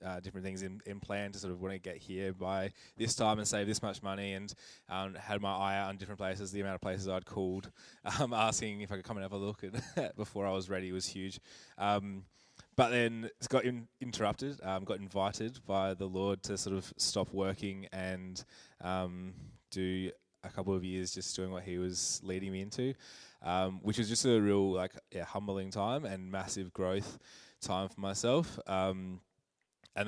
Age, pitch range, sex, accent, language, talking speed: 20-39, 95-100 Hz, male, Australian, English, 210 wpm